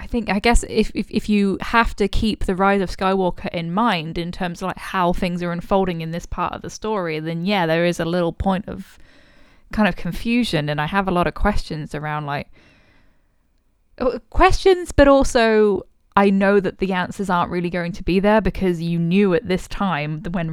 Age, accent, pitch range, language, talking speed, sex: 10-29, British, 160-195 Hz, English, 210 wpm, female